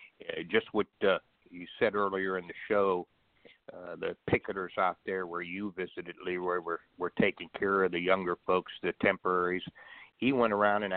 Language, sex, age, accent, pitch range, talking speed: English, male, 60-79, American, 90-105 Hz, 175 wpm